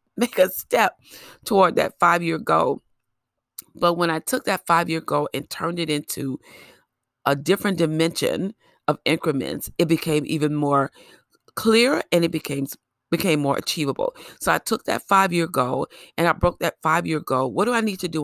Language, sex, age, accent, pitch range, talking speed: English, female, 40-59, American, 150-180 Hz, 170 wpm